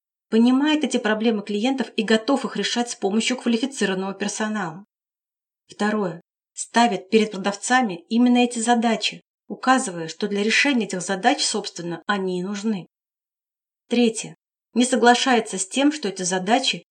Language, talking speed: Russian, 130 wpm